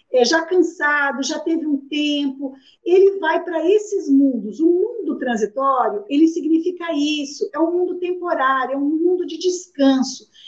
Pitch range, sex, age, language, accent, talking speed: 270-345 Hz, female, 50-69, Portuguese, Brazilian, 155 wpm